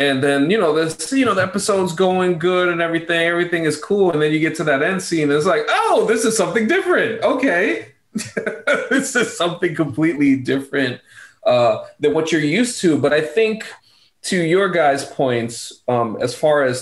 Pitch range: 115-165 Hz